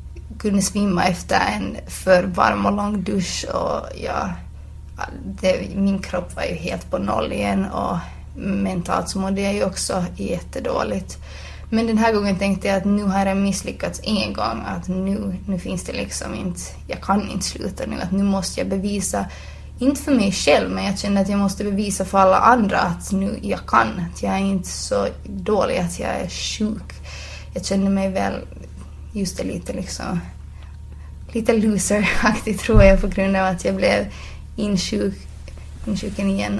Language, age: Swedish, 20-39